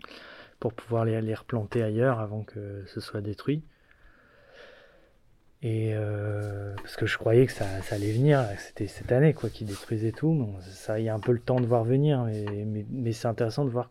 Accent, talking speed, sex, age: French, 190 wpm, male, 20-39